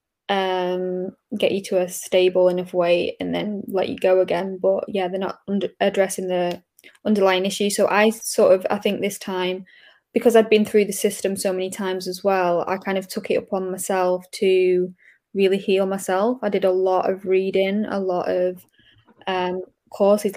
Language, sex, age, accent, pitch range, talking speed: English, female, 10-29, British, 185-200 Hz, 190 wpm